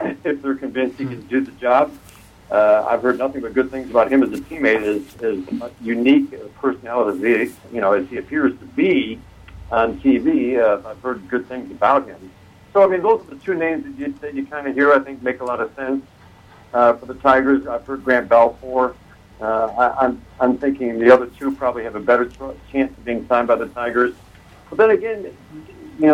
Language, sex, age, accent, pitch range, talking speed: English, male, 60-79, American, 110-135 Hz, 210 wpm